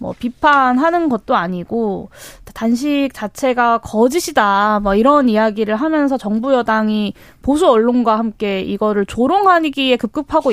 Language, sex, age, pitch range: Korean, female, 20-39, 210-275 Hz